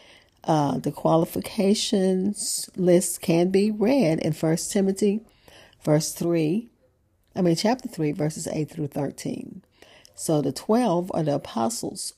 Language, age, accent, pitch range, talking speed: English, 40-59, American, 155-195 Hz, 130 wpm